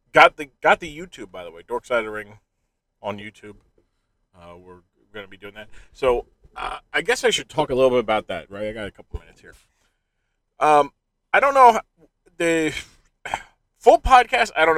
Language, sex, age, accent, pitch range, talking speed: English, male, 30-49, American, 100-145 Hz, 190 wpm